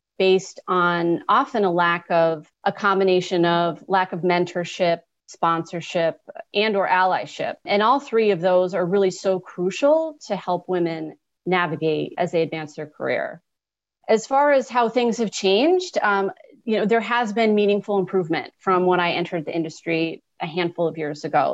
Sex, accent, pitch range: female, American, 170-210 Hz